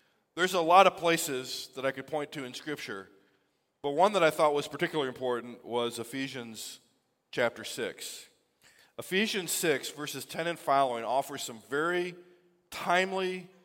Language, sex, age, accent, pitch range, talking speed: English, male, 40-59, American, 135-175 Hz, 150 wpm